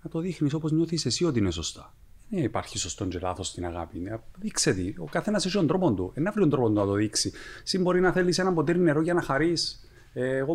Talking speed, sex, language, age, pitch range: 230 wpm, male, Greek, 30-49, 110-135 Hz